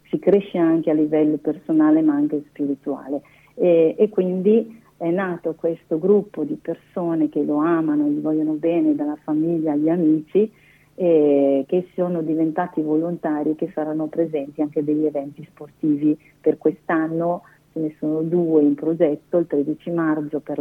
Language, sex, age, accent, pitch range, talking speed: Italian, female, 40-59, native, 150-180 Hz, 155 wpm